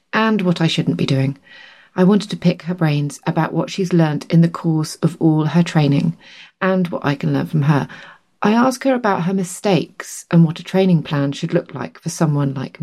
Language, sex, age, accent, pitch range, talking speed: English, female, 30-49, British, 155-200 Hz, 220 wpm